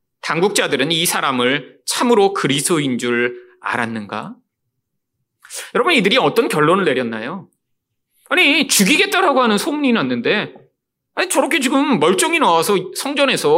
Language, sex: Korean, male